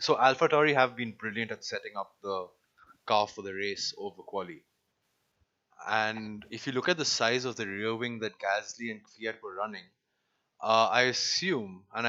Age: 20-39